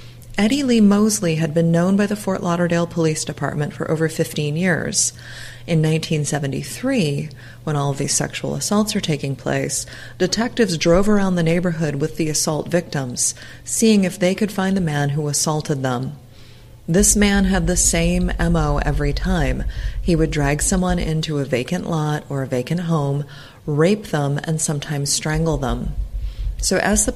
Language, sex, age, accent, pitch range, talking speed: English, female, 30-49, American, 140-185 Hz, 165 wpm